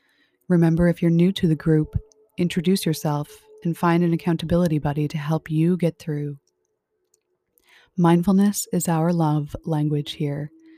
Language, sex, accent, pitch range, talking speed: English, female, American, 155-185 Hz, 140 wpm